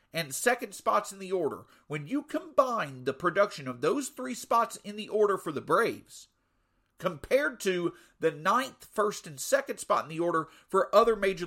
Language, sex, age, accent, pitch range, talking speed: English, male, 50-69, American, 175-245 Hz, 185 wpm